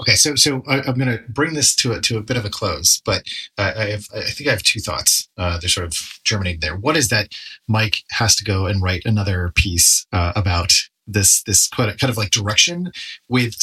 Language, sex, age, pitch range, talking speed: English, male, 30-49, 100-120 Hz, 225 wpm